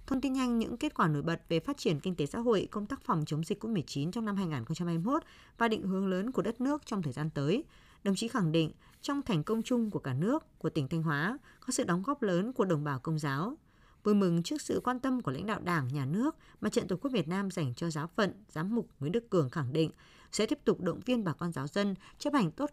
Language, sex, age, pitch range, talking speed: Vietnamese, female, 20-39, 160-230 Hz, 270 wpm